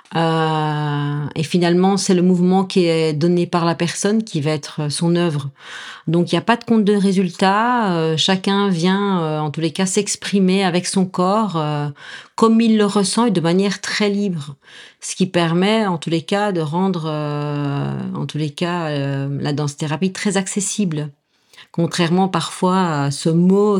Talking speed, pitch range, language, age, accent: 180 wpm, 155-190 Hz, French, 40-59, French